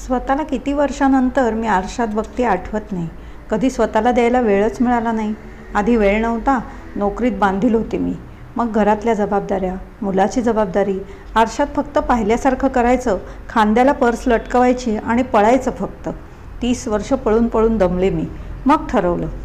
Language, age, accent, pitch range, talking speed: Marathi, 50-69, native, 205-245 Hz, 135 wpm